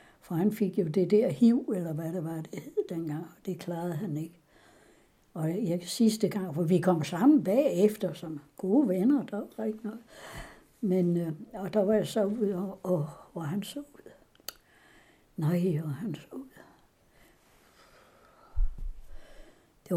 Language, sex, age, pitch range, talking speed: Danish, female, 60-79, 175-220 Hz, 165 wpm